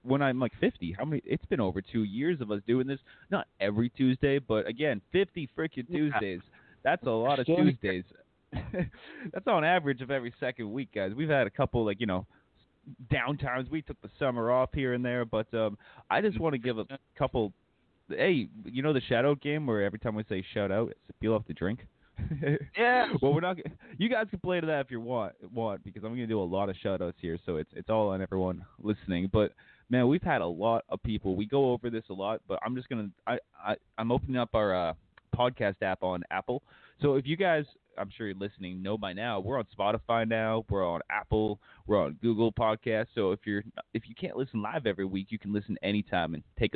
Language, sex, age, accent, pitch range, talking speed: English, male, 20-39, American, 100-135 Hz, 225 wpm